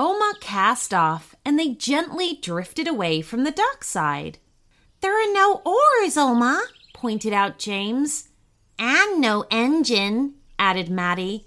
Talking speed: 125 wpm